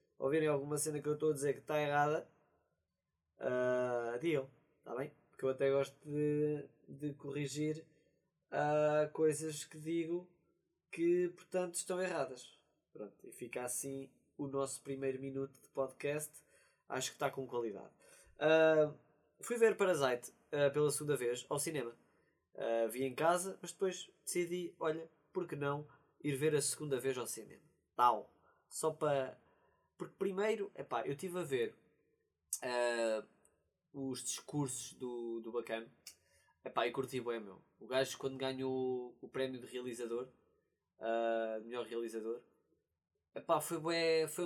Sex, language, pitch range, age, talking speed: male, Portuguese, 130-155 Hz, 20-39, 140 wpm